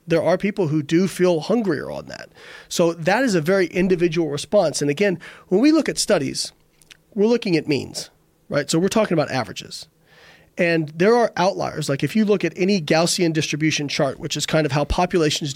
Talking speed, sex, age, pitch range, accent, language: 200 wpm, male, 40-59, 150-190 Hz, American, English